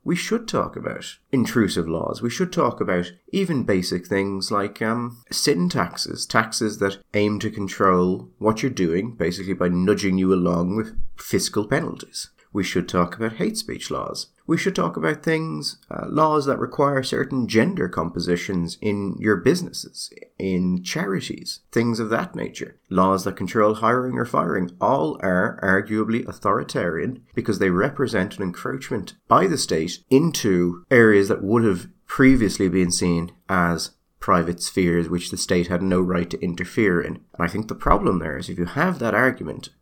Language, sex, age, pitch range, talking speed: English, male, 30-49, 90-110 Hz, 165 wpm